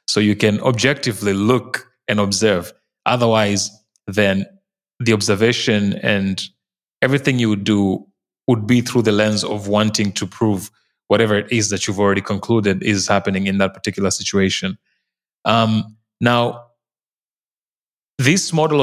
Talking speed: 135 wpm